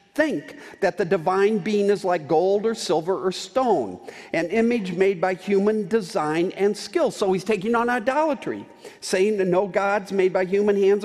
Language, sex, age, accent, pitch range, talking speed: English, male, 50-69, American, 180-230 Hz, 180 wpm